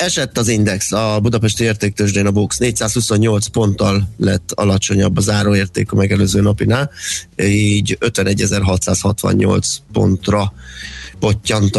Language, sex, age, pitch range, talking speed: Hungarian, male, 30-49, 100-115 Hz, 105 wpm